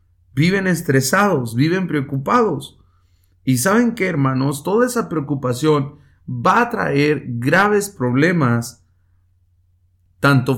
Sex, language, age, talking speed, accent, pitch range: male, English, 40-59, 95 wpm, Mexican, 100-160 Hz